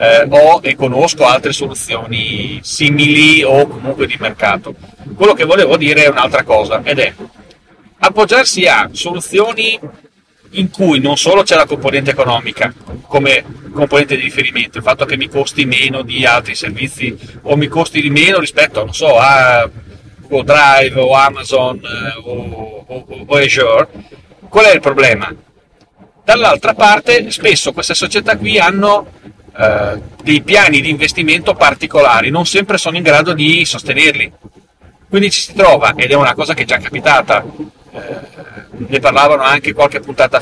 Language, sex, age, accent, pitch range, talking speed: Italian, male, 40-59, native, 130-180 Hz, 155 wpm